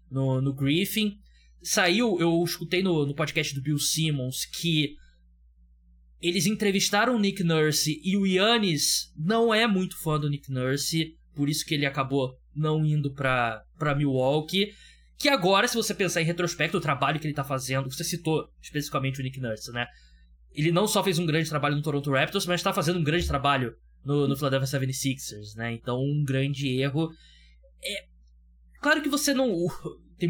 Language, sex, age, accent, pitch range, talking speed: Portuguese, male, 20-39, Brazilian, 135-180 Hz, 175 wpm